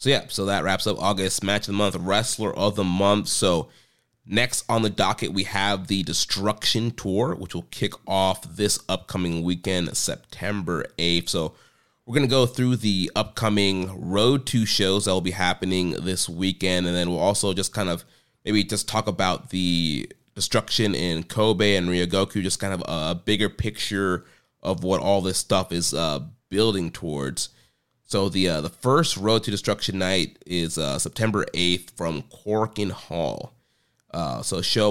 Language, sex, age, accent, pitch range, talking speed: English, male, 30-49, American, 95-110 Hz, 175 wpm